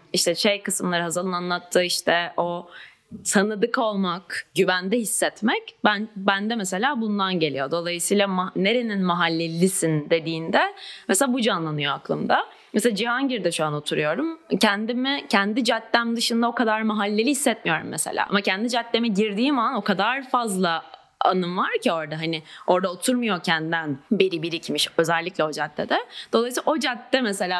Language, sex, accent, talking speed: Turkish, female, native, 140 wpm